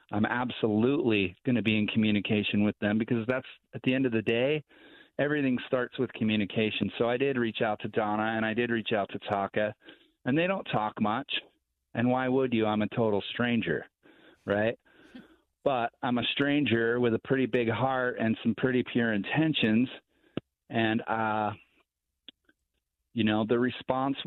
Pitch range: 105-125 Hz